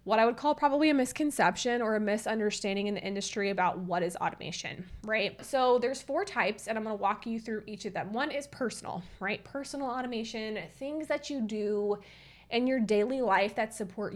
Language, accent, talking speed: English, American, 205 wpm